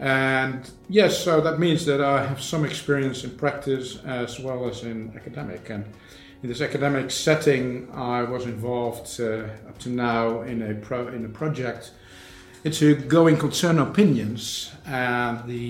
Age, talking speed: 50-69, 155 wpm